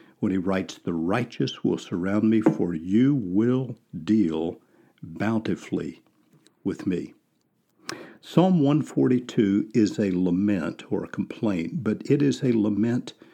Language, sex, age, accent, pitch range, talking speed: English, male, 60-79, American, 100-125 Hz, 125 wpm